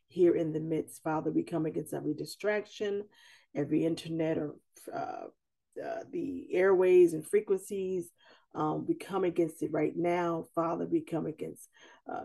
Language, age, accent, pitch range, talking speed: English, 40-59, American, 170-235 Hz, 150 wpm